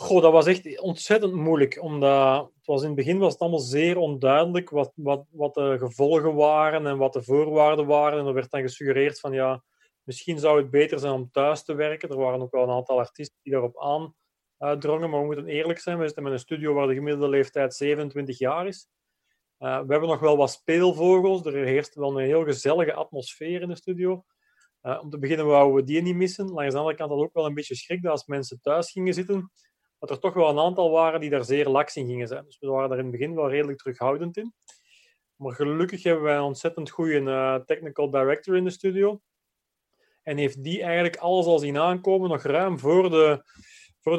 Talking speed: 220 wpm